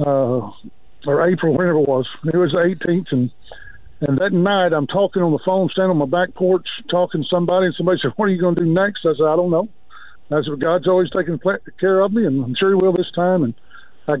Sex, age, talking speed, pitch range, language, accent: male, 50-69, 250 wpm, 150-185 Hz, English, American